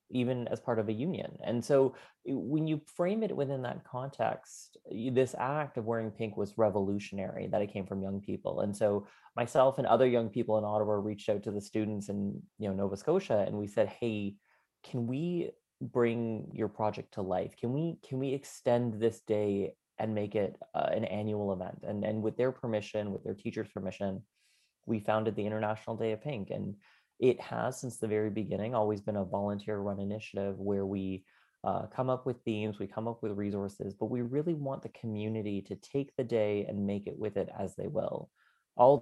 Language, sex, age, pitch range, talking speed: English, male, 30-49, 100-120 Hz, 205 wpm